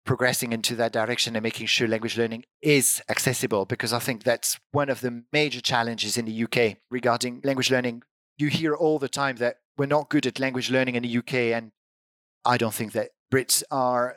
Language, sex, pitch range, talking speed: English, male, 115-150 Hz, 205 wpm